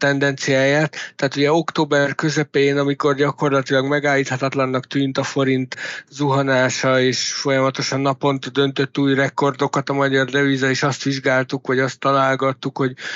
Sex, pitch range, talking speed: male, 130-140 Hz, 130 wpm